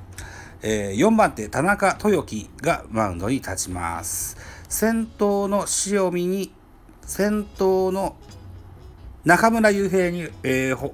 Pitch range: 100-165 Hz